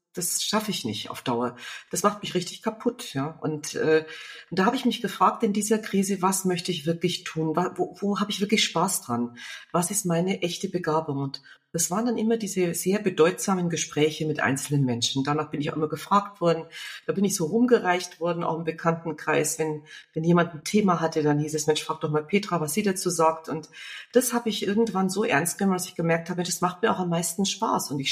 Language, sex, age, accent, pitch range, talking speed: German, female, 40-59, German, 155-200 Hz, 230 wpm